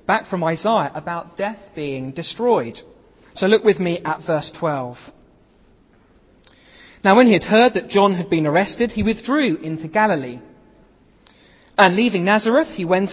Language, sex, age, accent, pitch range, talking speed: English, male, 40-59, British, 150-210 Hz, 150 wpm